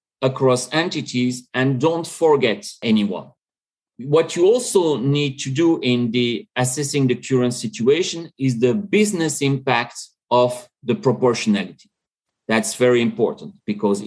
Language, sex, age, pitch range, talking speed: English, male, 40-59, 115-145 Hz, 125 wpm